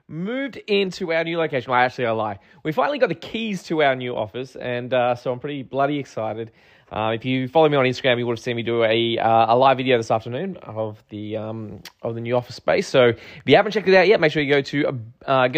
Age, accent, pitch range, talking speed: 20-39, Australian, 110-140 Hz, 260 wpm